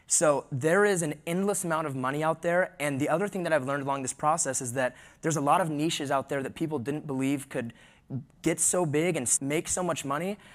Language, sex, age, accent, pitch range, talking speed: English, male, 20-39, American, 135-160 Hz, 240 wpm